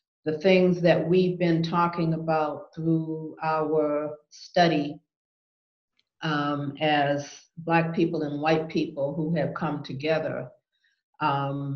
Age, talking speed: 50-69, 110 wpm